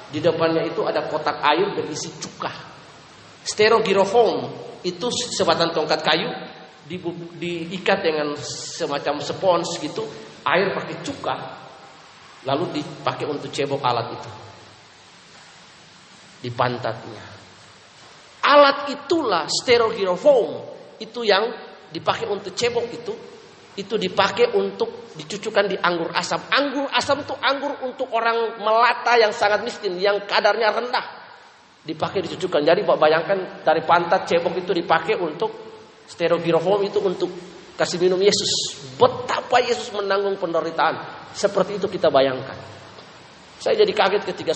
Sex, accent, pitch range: male, native, 155-215 Hz